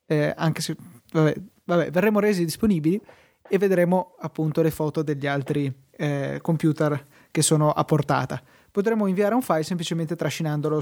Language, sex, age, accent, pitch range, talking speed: Italian, male, 20-39, native, 145-165 Hz, 150 wpm